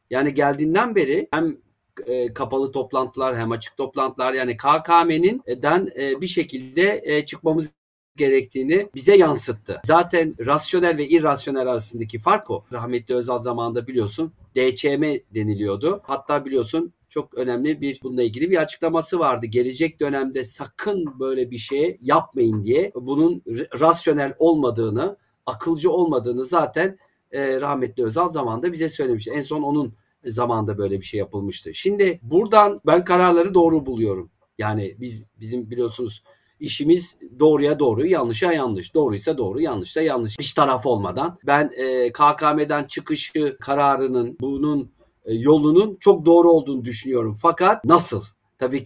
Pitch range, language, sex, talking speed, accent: 125-165 Hz, Turkish, male, 130 wpm, native